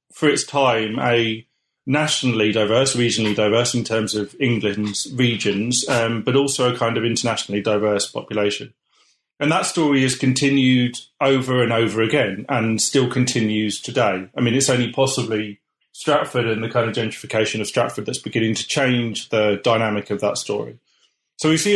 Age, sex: 30-49, male